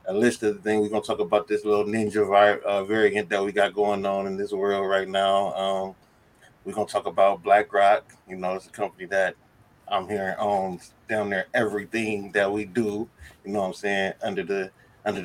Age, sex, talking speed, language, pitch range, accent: 20-39, male, 215 wpm, English, 95-110 Hz, American